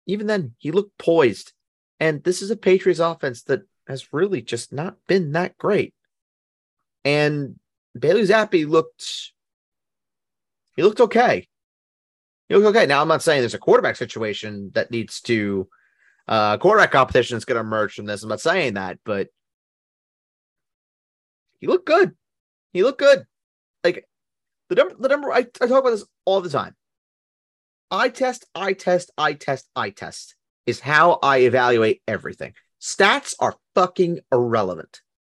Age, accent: 30-49, American